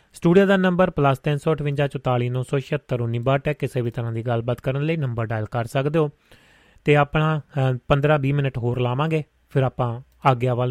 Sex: male